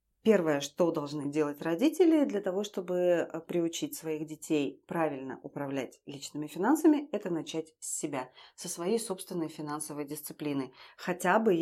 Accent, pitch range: native, 155-190 Hz